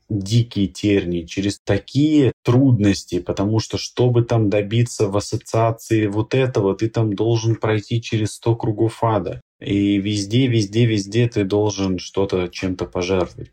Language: Russian